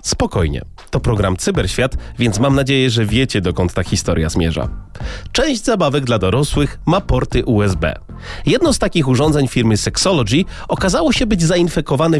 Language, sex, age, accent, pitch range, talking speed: Polish, male, 30-49, native, 105-165 Hz, 150 wpm